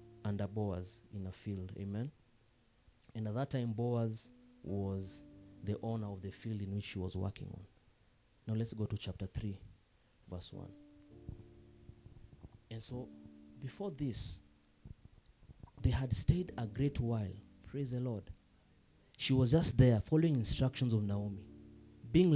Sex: male